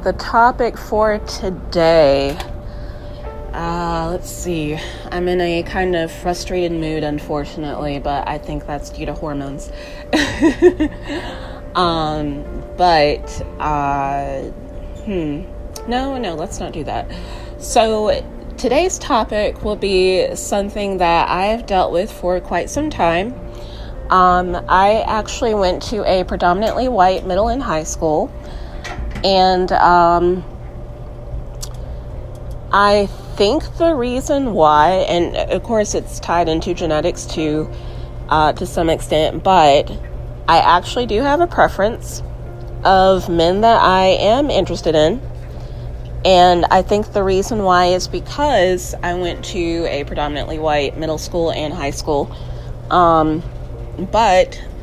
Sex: female